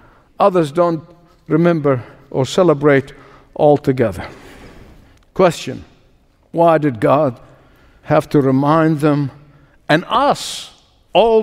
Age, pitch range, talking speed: 60-79, 150-230 Hz, 90 wpm